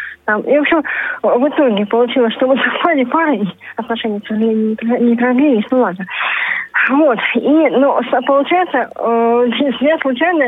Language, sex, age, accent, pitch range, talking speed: Russian, female, 20-39, native, 220-265 Hz, 150 wpm